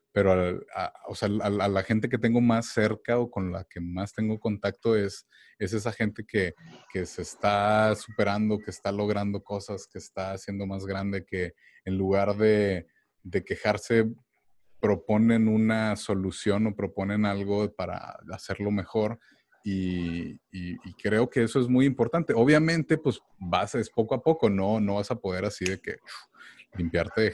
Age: 30-49